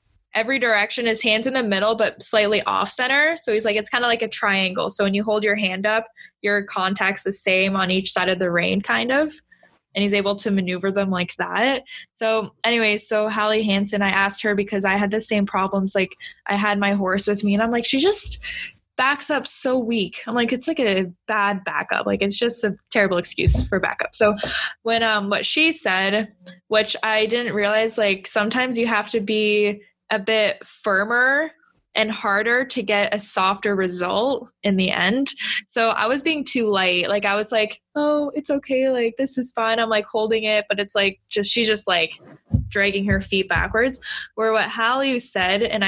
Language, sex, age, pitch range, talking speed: English, female, 10-29, 200-235 Hz, 205 wpm